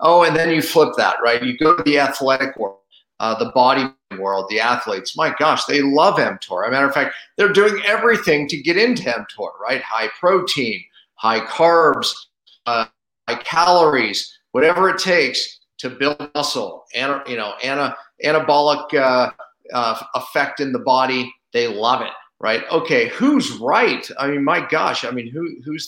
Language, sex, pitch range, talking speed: English, male, 120-155 Hz, 175 wpm